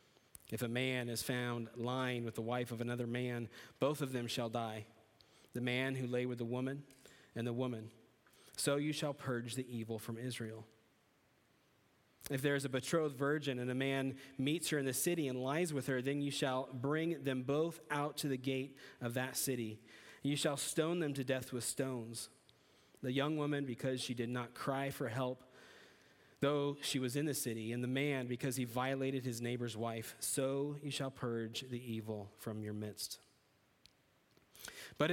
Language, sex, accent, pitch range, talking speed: English, male, American, 120-145 Hz, 185 wpm